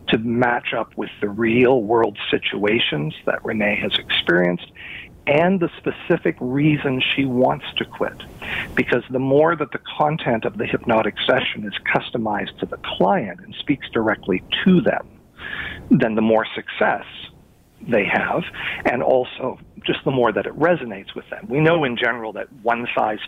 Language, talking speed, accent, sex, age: English, 160 wpm, American, male, 50-69